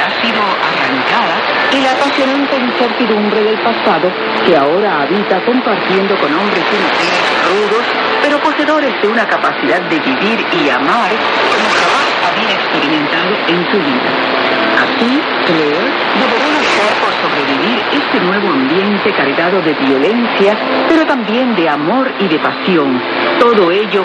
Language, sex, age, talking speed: Spanish, female, 50-69, 130 wpm